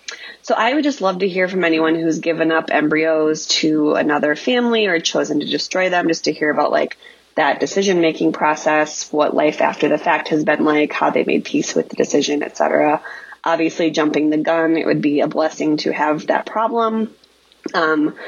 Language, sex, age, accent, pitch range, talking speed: English, female, 20-39, American, 155-210 Hz, 200 wpm